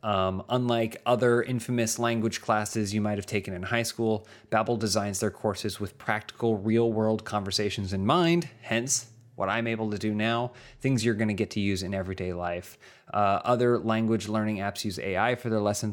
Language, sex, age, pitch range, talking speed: English, male, 30-49, 100-120 Hz, 185 wpm